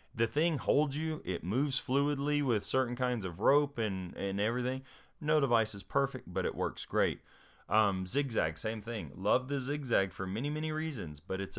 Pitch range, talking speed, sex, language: 90-130 Hz, 185 wpm, male, English